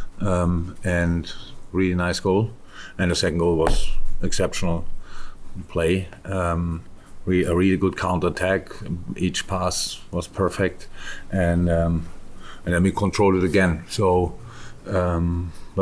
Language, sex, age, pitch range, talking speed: English, male, 50-69, 90-105 Hz, 125 wpm